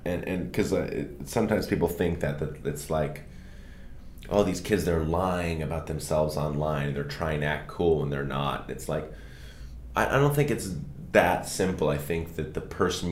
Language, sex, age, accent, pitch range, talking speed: English, male, 30-49, American, 70-90 Hz, 190 wpm